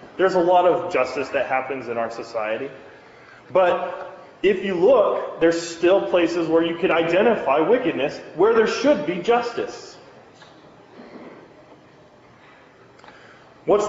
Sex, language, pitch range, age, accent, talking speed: male, English, 165-230 Hz, 30-49, American, 120 wpm